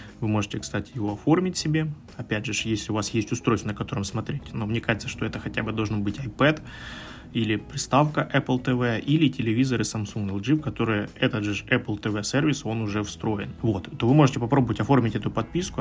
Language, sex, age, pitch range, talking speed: Ukrainian, male, 20-39, 105-135 Hz, 195 wpm